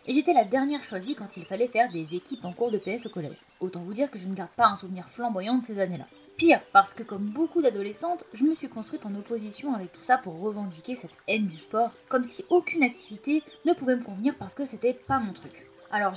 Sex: female